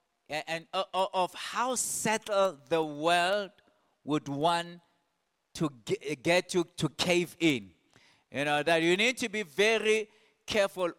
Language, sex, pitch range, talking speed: English, male, 170-235 Hz, 125 wpm